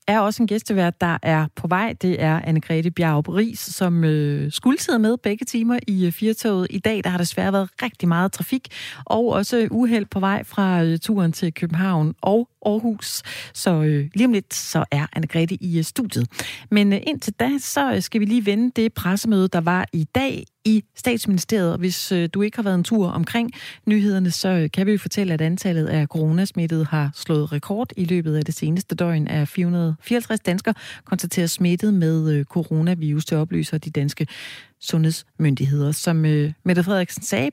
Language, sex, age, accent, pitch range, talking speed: Danish, female, 30-49, native, 160-210 Hz, 185 wpm